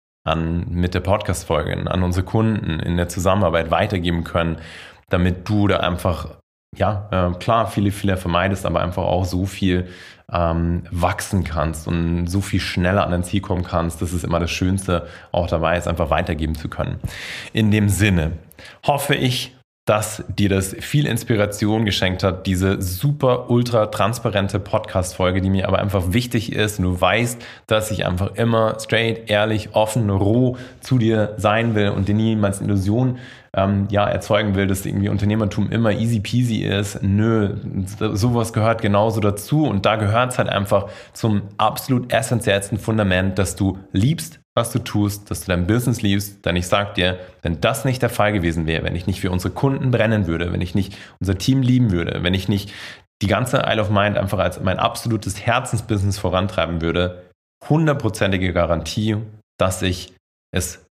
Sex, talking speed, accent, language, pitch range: male, 170 wpm, German, German, 90-110 Hz